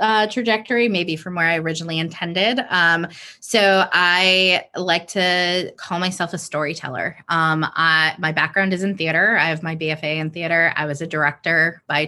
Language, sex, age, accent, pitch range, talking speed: English, female, 20-39, American, 160-185 Hz, 165 wpm